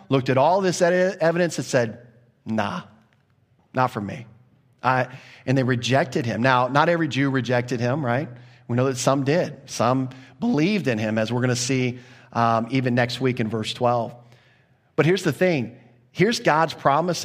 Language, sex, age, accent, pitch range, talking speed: English, male, 40-59, American, 120-140 Hz, 175 wpm